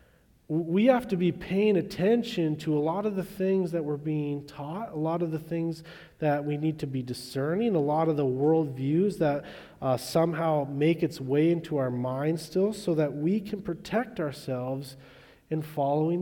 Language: English